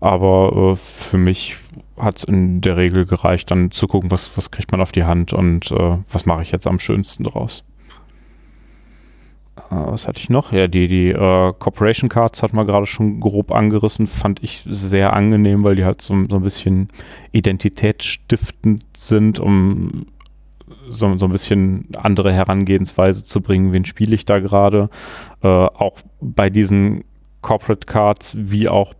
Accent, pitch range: German, 90-105 Hz